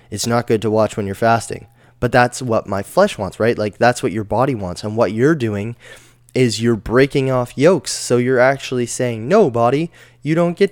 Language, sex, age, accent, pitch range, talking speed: English, male, 10-29, American, 110-125 Hz, 220 wpm